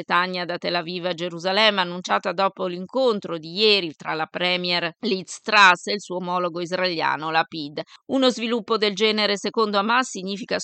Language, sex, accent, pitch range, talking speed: Italian, female, native, 185-215 Hz, 165 wpm